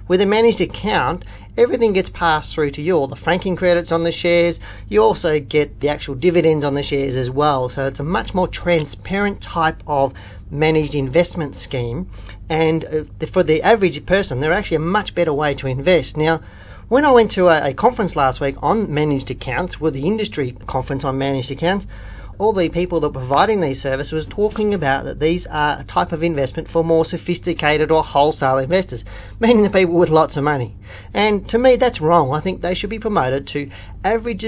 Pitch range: 135-175 Hz